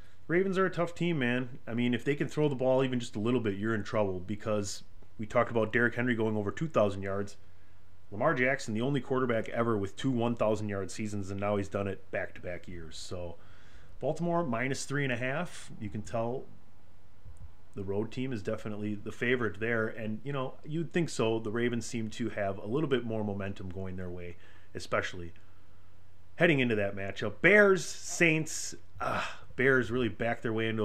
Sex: male